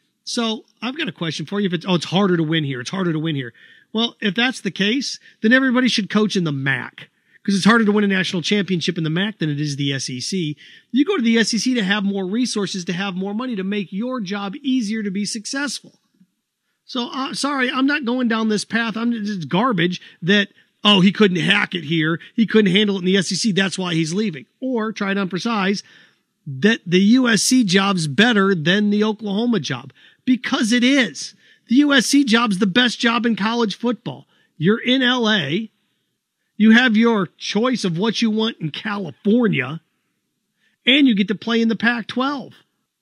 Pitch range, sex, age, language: 185-235 Hz, male, 40-59, English